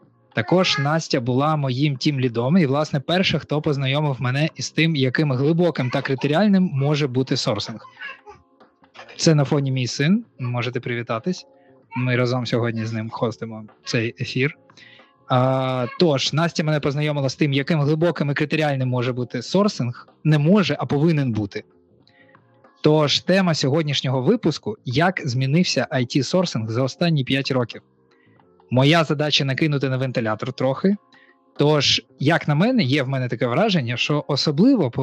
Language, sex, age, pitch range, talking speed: Ukrainian, male, 20-39, 125-165 Hz, 145 wpm